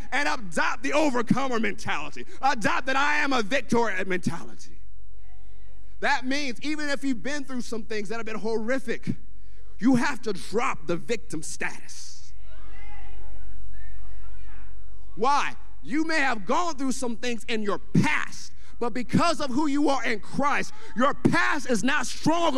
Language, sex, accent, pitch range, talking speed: English, male, American, 185-310 Hz, 150 wpm